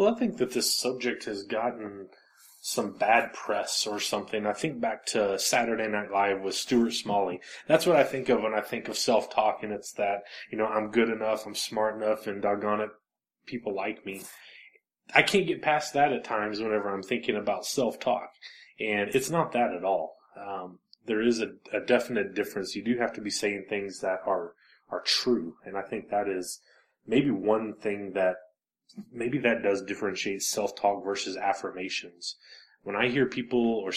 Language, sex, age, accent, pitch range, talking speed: English, male, 20-39, American, 100-120 Hz, 190 wpm